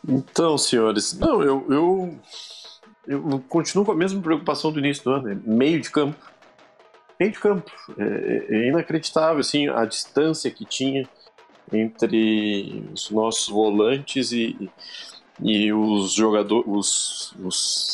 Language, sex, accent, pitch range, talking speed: Portuguese, male, Brazilian, 110-160 Hz, 135 wpm